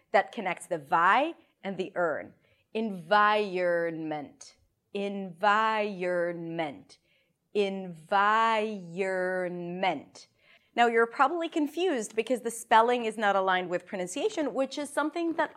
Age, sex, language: 30-49, female, English